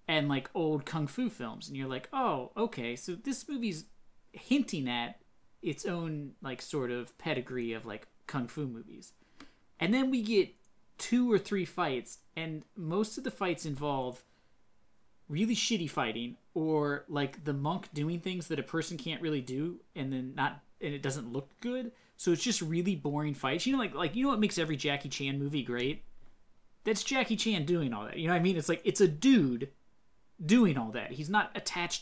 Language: English